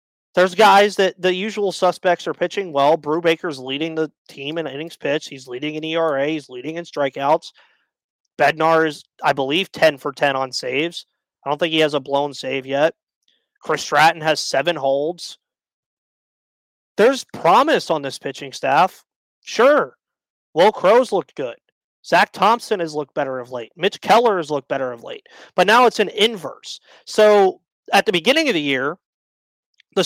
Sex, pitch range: male, 150-195 Hz